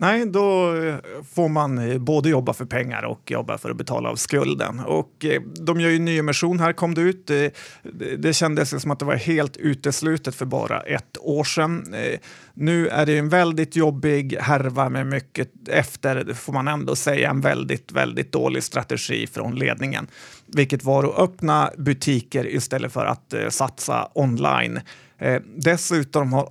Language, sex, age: Swedish, male, 30-49